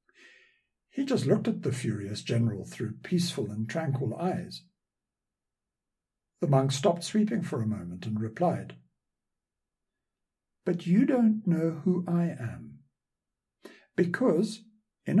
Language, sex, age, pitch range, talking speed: English, male, 60-79, 120-175 Hz, 120 wpm